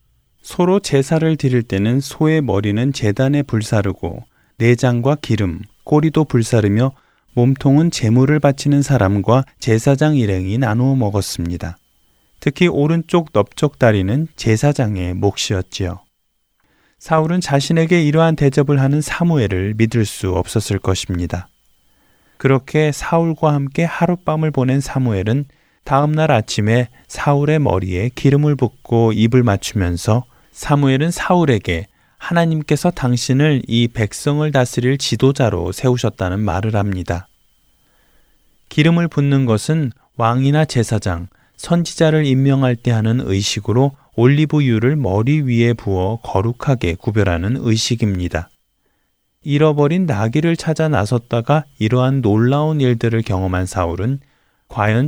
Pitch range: 105-145 Hz